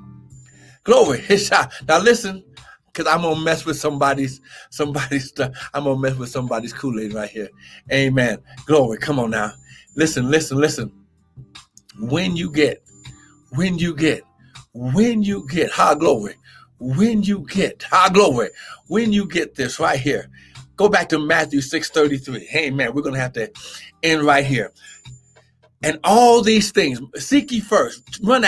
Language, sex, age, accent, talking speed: English, male, 50-69, American, 155 wpm